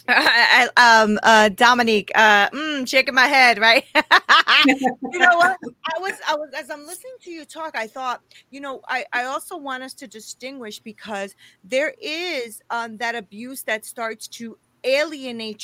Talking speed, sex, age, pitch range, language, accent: 175 wpm, female, 30-49, 220-280 Hz, English, American